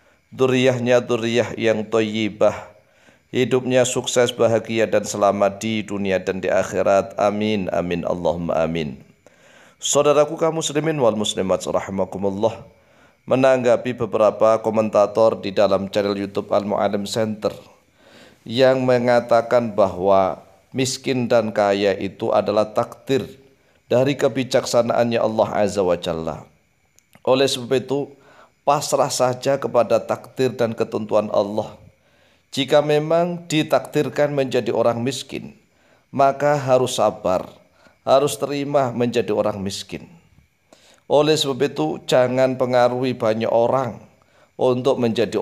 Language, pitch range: Indonesian, 110-135 Hz